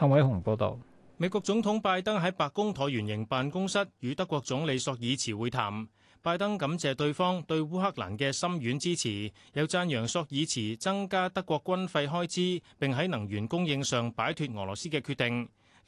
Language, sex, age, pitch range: Chinese, male, 30-49, 120-175 Hz